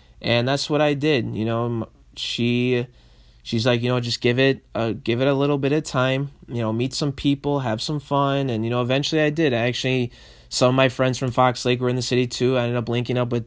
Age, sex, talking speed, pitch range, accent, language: 20-39, male, 245 wpm, 115-135 Hz, American, English